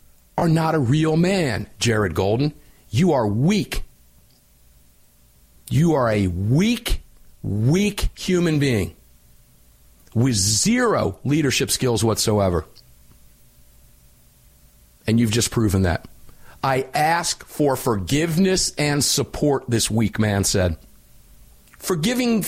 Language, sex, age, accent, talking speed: English, male, 50-69, American, 100 wpm